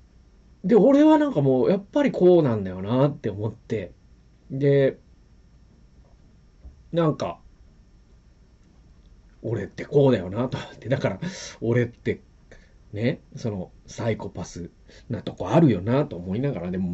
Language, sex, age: Japanese, male, 40-59